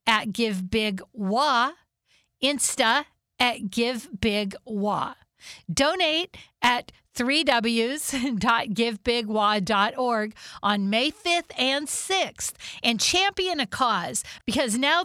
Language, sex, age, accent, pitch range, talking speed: English, female, 50-69, American, 215-270 Hz, 75 wpm